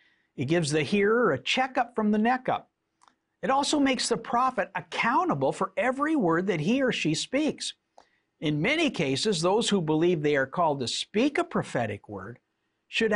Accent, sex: American, male